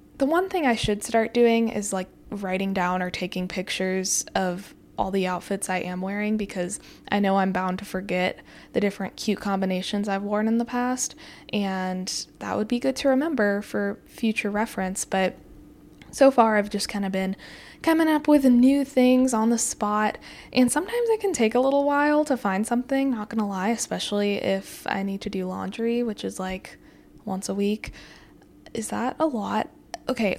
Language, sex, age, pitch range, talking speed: English, female, 10-29, 195-245 Hz, 190 wpm